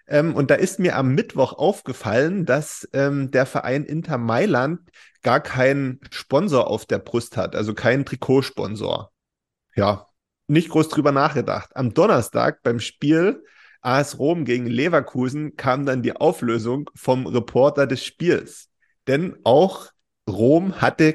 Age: 30-49